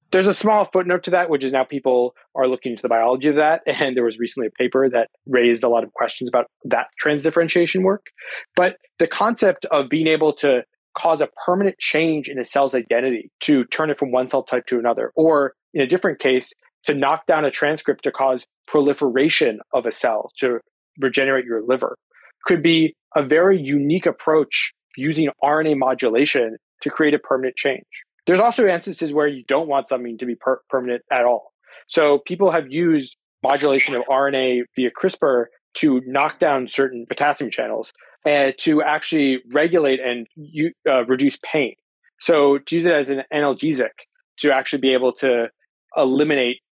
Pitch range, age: 130-155 Hz, 20-39